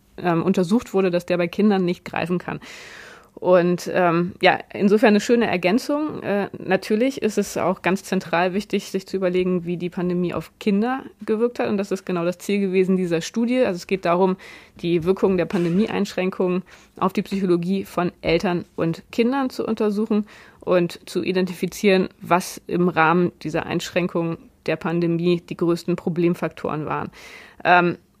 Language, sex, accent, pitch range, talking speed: German, female, German, 175-210 Hz, 160 wpm